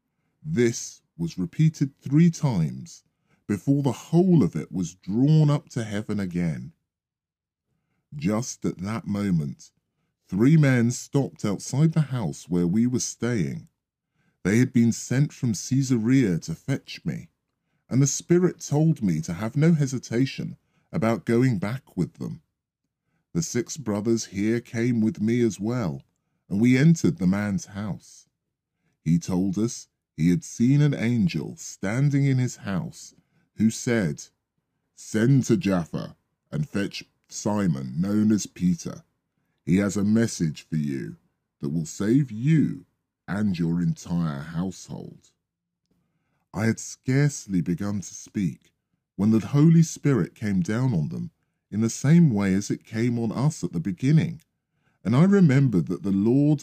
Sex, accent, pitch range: female, British, 100-145 Hz